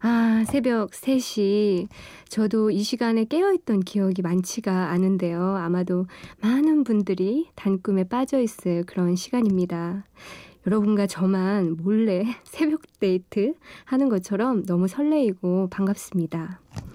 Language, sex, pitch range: Korean, female, 185-230 Hz